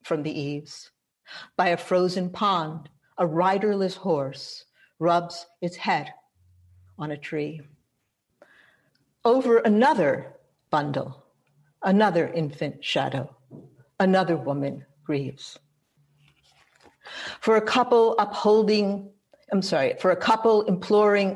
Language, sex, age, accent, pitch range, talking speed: English, female, 60-79, American, 155-200 Hz, 100 wpm